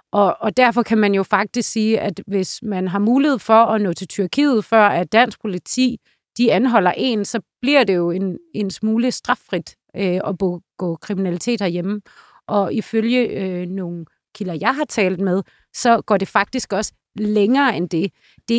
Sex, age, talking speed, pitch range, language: female, 30-49, 170 wpm, 185-230 Hz, Danish